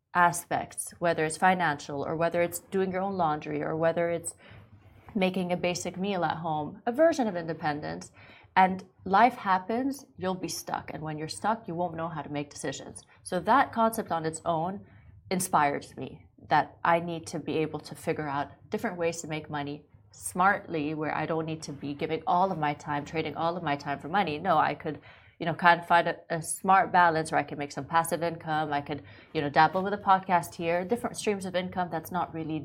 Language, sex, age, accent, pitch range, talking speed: English, female, 30-49, American, 150-180 Hz, 215 wpm